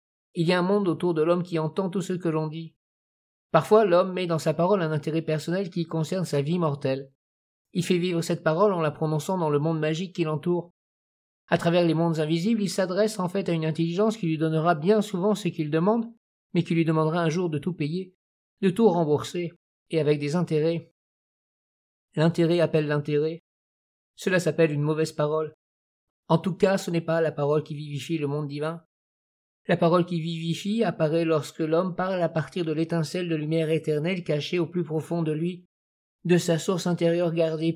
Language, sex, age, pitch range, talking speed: French, male, 50-69, 155-180 Hz, 200 wpm